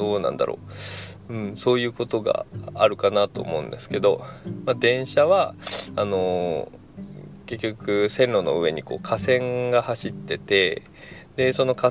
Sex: male